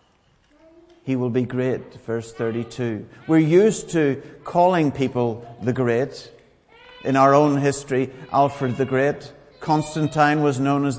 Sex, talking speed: male, 130 wpm